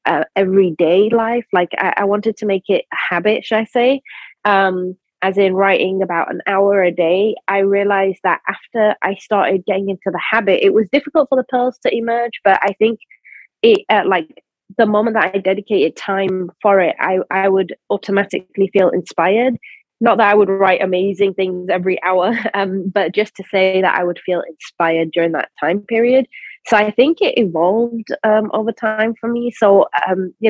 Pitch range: 185-220 Hz